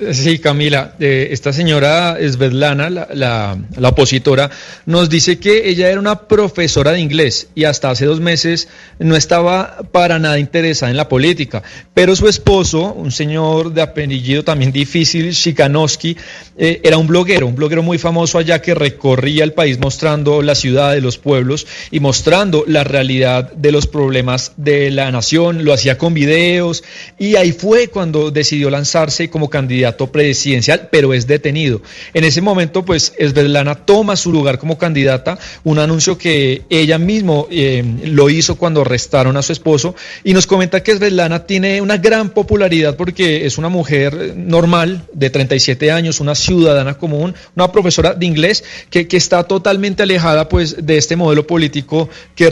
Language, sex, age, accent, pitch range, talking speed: Spanish, male, 40-59, Colombian, 140-170 Hz, 165 wpm